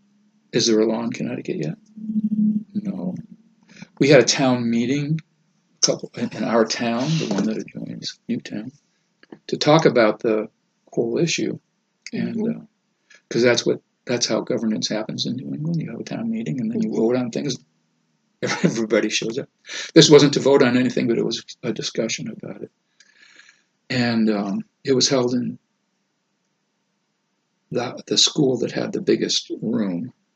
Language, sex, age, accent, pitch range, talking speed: English, male, 60-79, American, 125-215 Hz, 155 wpm